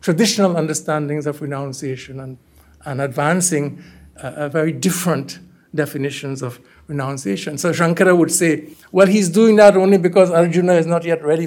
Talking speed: 145 wpm